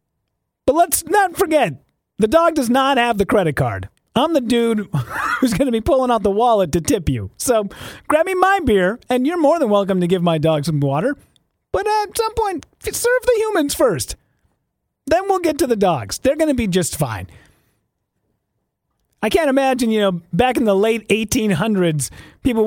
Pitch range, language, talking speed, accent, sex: 165-255 Hz, English, 195 wpm, American, male